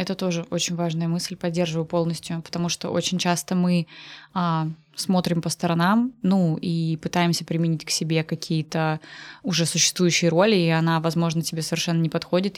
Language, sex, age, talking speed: Russian, female, 20-39, 155 wpm